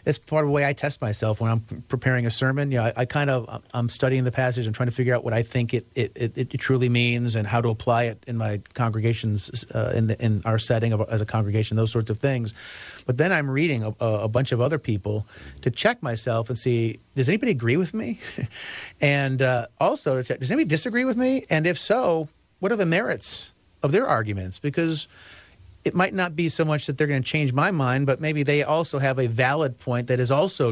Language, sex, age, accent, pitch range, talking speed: English, male, 40-59, American, 110-140 Hz, 240 wpm